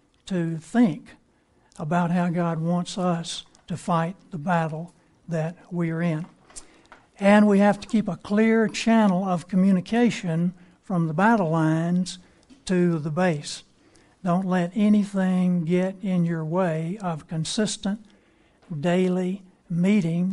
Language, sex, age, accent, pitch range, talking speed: English, male, 60-79, American, 170-205 Hz, 125 wpm